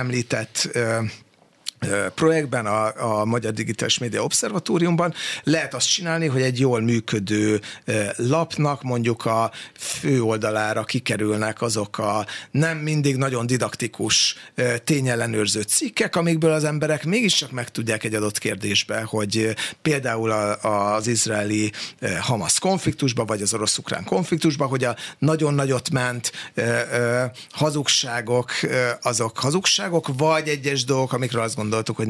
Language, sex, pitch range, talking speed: Hungarian, male, 115-155 Hz, 115 wpm